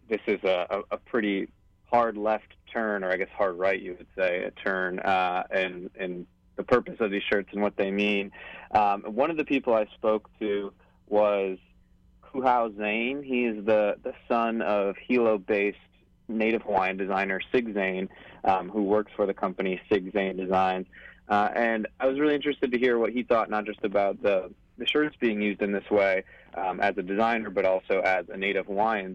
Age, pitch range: 30-49, 95-110 Hz